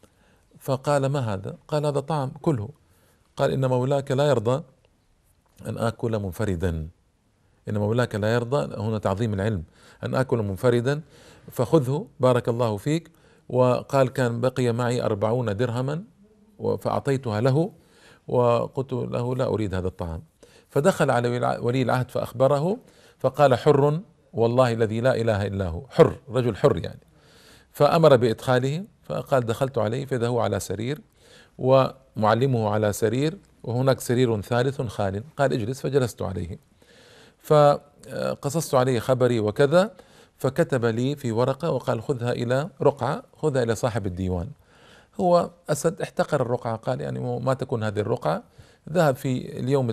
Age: 50-69